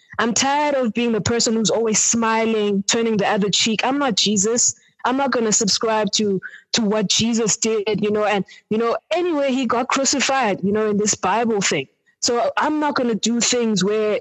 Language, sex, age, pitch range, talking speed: English, female, 20-39, 210-260 Hz, 205 wpm